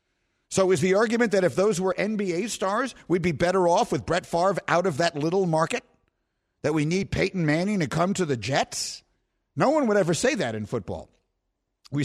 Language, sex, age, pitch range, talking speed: English, male, 50-69, 155-225 Hz, 205 wpm